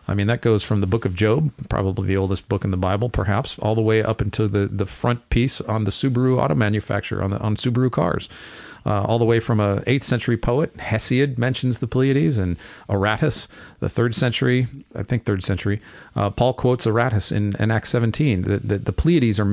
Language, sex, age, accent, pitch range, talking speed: English, male, 40-59, American, 100-125 Hz, 220 wpm